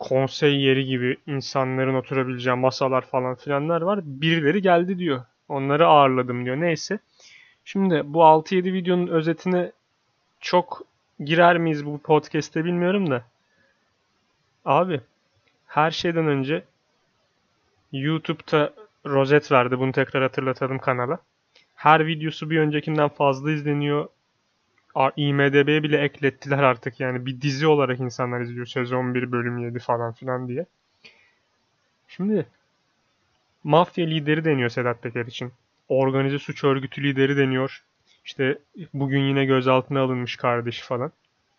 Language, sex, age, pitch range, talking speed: Turkish, male, 30-49, 130-160 Hz, 115 wpm